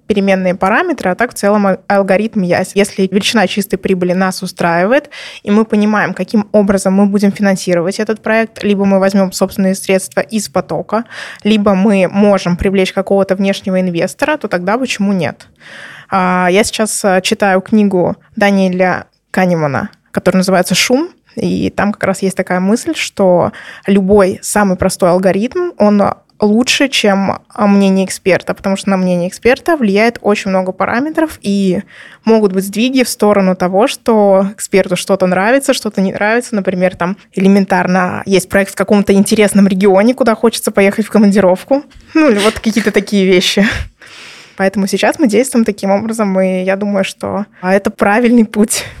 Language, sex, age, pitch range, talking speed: Russian, female, 20-39, 190-215 Hz, 150 wpm